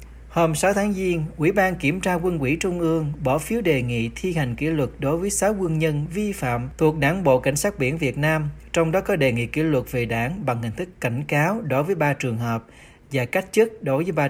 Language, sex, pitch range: Vietnamese, male, 125-170 Hz